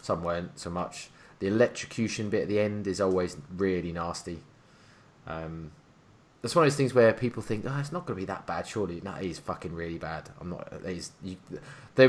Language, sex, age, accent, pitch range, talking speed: English, male, 20-39, British, 95-120 Hz, 215 wpm